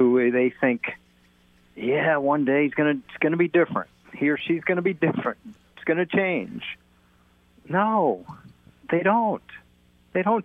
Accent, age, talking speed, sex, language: American, 50-69, 165 wpm, male, English